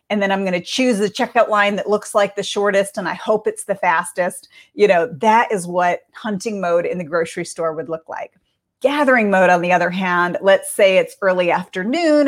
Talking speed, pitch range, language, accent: 220 wpm, 185-240 Hz, English, American